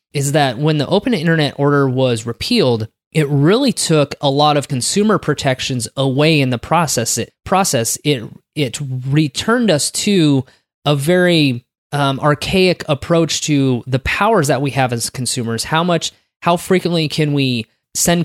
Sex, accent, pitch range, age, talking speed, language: male, American, 130-155 Hz, 20-39, 160 wpm, English